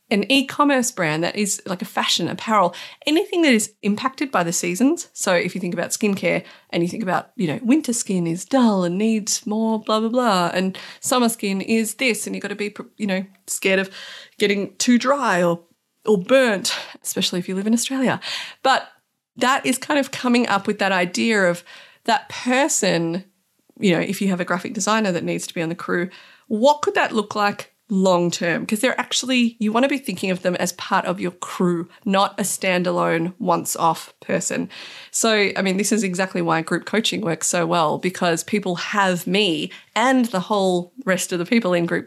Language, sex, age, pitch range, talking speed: English, female, 30-49, 180-230 Hz, 205 wpm